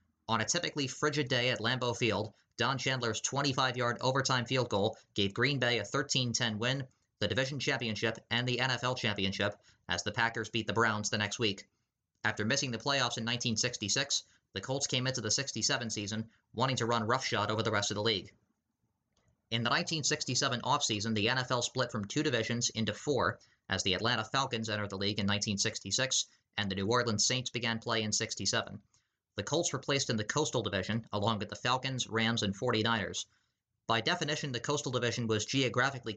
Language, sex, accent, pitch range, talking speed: English, male, American, 105-130 Hz, 185 wpm